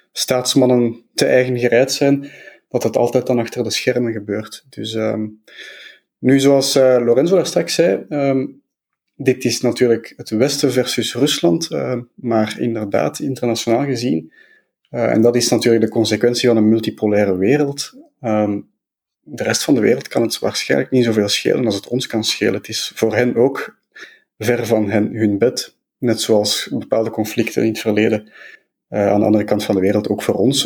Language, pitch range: Dutch, 110-130 Hz